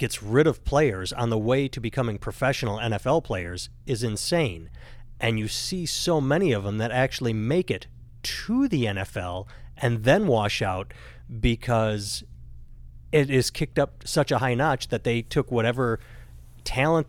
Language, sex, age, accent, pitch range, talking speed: English, male, 30-49, American, 105-130 Hz, 160 wpm